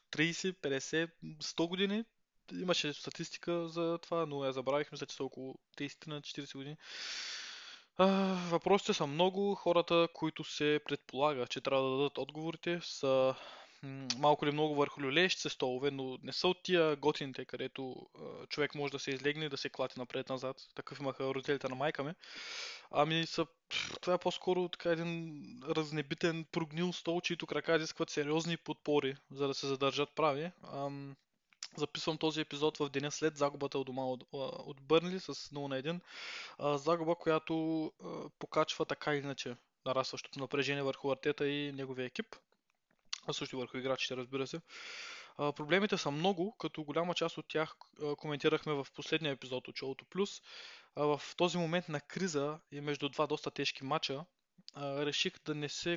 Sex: male